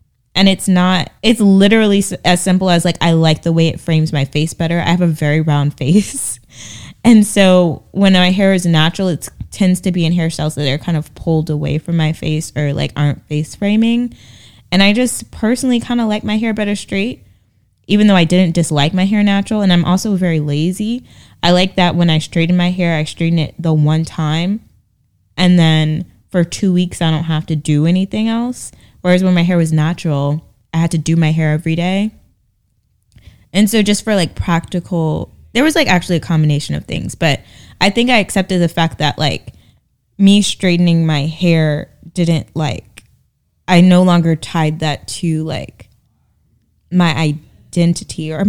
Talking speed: 190 wpm